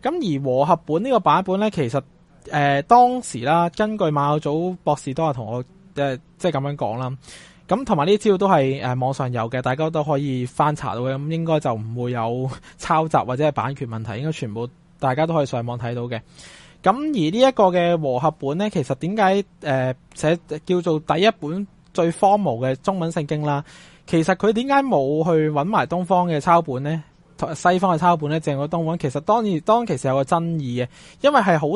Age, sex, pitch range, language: 20-39, male, 135-180 Hz, Chinese